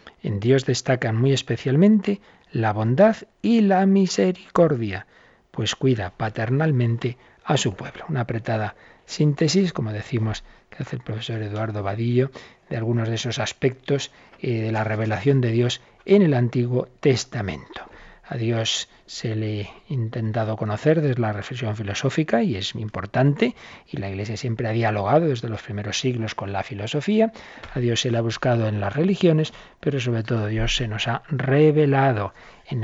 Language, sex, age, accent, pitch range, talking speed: Spanish, male, 40-59, Spanish, 110-140 Hz, 160 wpm